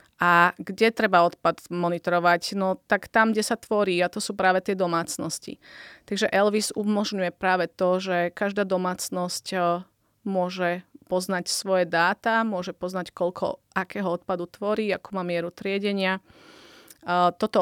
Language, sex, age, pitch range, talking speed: Slovak, female, 30-49, 180-215 Hz, 135 wpm